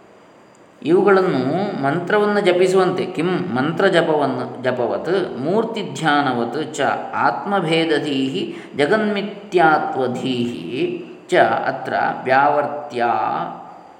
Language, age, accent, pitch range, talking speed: Kannada, 20-39, native, 125-180 Hz, 55 wpm